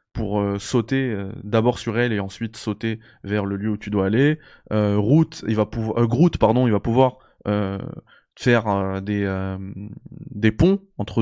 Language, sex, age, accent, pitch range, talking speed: French, male, 20-39, French, 105-120 Hz, 185 wpm